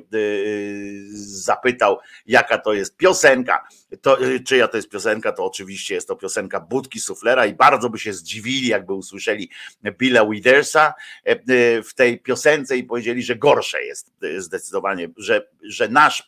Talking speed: 135 wpm